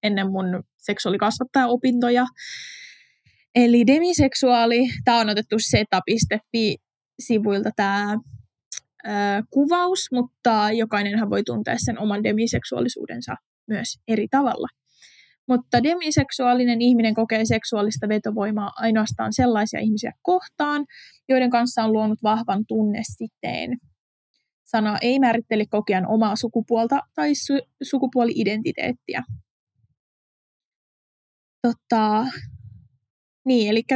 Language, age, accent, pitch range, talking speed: Finnish, 20-39, native, 210-250 Hz, 85 wpm